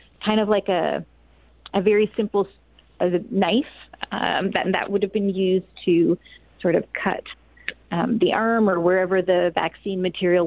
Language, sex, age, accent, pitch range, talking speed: English, female, 30-49, American, 180-220 Hz, 165 wpm